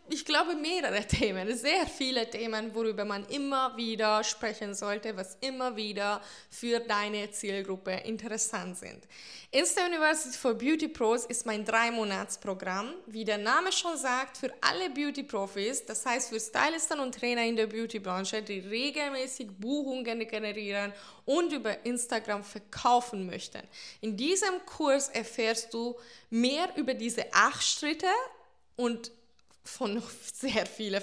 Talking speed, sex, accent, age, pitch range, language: 140 wpm, female, German, 20-39, 210-265 Hz, German